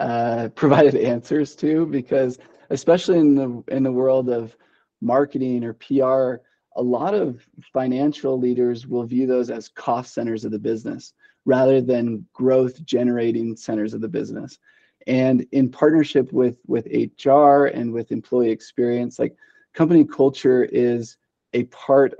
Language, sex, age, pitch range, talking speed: English, male, 20-39, 120-145 Hz, 145 wpm